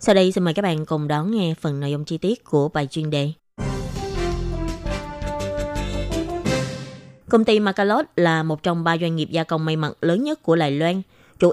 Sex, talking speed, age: female, 195 wpm, 20-39